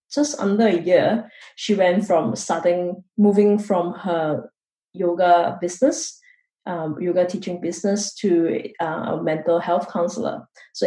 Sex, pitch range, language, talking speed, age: female, 175-225 Hz, English, 125 wpm, 20-39